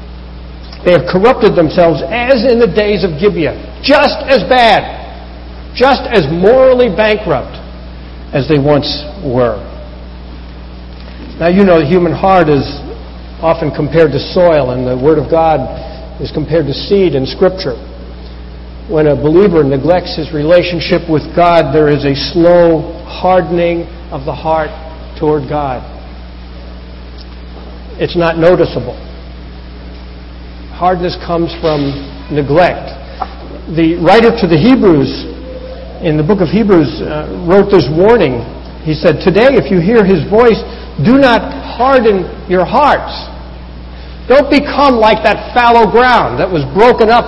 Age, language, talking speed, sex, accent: 60-79, English, 135 wpm, male, American